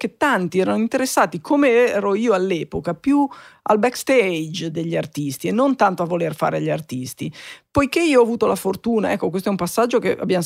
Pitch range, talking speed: 175-225 Hz, 195 wpm